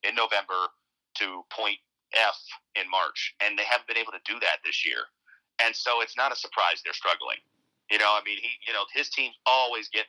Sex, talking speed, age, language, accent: male, 215 wpm, 40-59, English, American